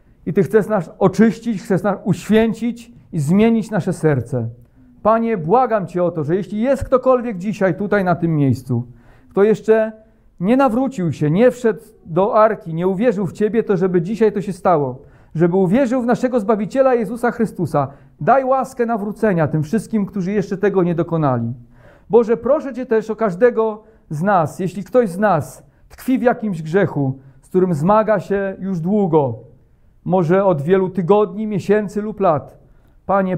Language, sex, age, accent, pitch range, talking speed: Polish, male, 40-59, native, 150-215 Hz, 165 wpm